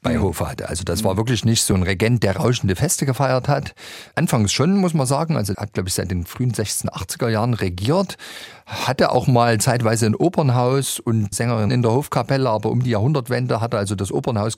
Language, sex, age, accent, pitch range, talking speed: German, male, 40-59, German, 100-125 Hz, 215 wpm